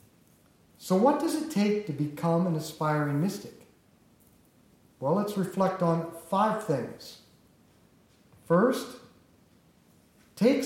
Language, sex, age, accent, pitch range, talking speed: English, male, 50-69, American, 150-210 Hz, 100 wpm